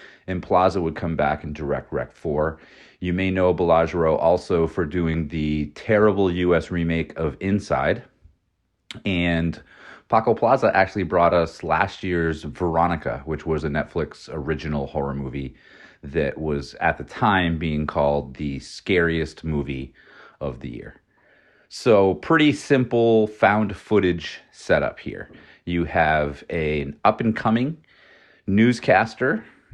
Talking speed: 135 wpm